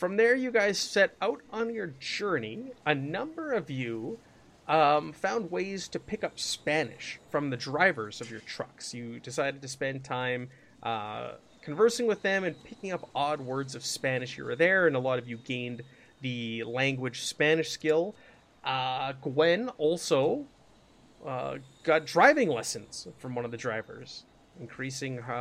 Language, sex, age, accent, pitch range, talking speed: English, male, 30-49, American, 130-185 Hz, 160 wpm